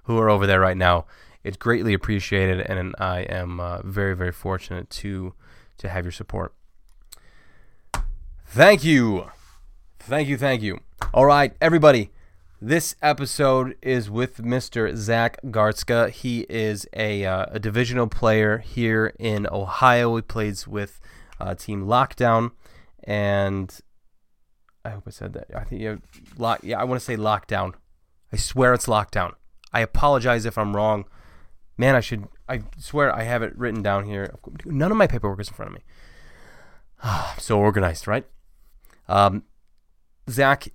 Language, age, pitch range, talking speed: English, 20-39, 95-115 Hz, 155 wpm